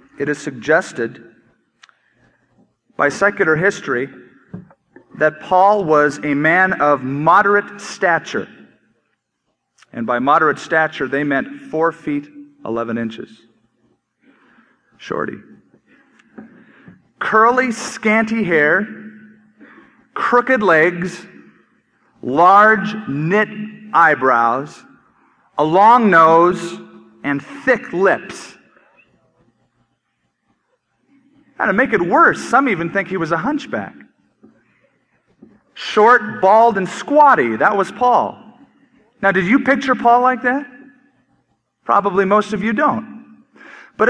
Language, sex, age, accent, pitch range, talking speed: English, male, 40-59, American, 155-245 Hz, 95 wpm